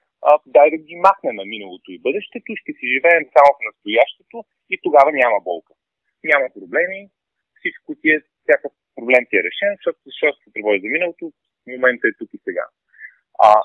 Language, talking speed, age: Bulgarian, 165 wpm, 30-49